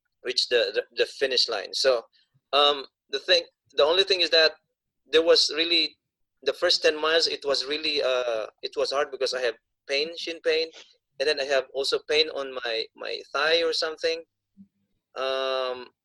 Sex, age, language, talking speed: male, 20-39, English, 180 wpm